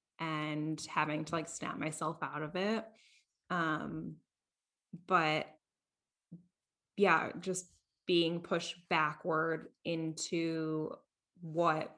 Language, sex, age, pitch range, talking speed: English, female, 20-39, 160-185 Hz, 90 wpm